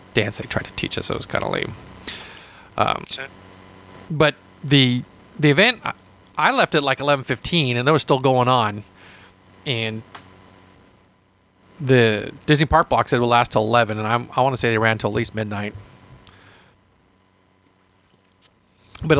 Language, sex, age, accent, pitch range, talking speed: English, male, 40-59, American, 95-140 Hz, 160 wpm